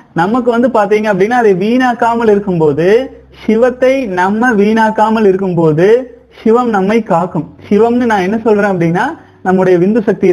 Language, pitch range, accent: Tamil, 185-240 Hz, native